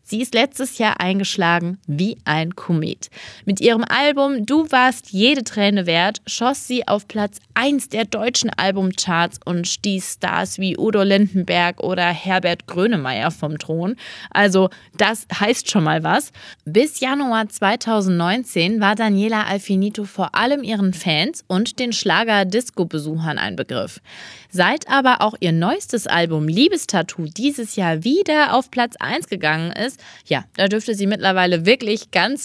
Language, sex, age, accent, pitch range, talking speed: German, female, 20-39, German, 180-235 Hz, 145 wpm